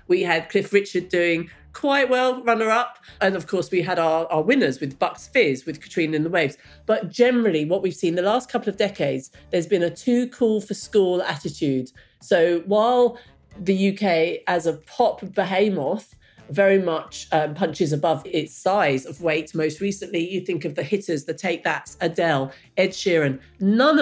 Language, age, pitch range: English, 40-59, 160-210 Hz